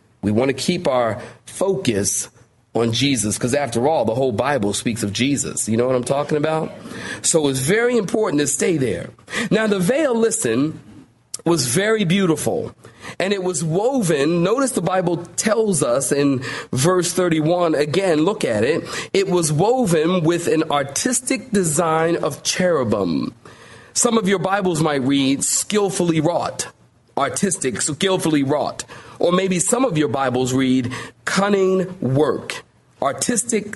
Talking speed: 150 wpm